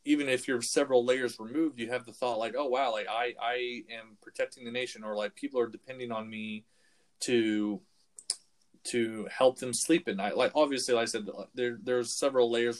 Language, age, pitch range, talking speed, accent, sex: English, 20-39, 110-130 Hz, 200 wpm, American, male